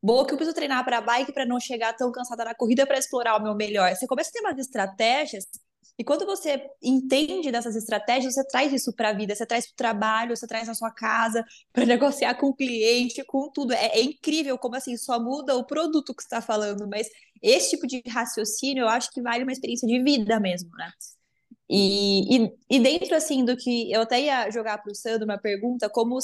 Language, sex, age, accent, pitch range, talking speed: Portuguese, female, 20-39, Brazilian, 215-260 Hz, 230 wpm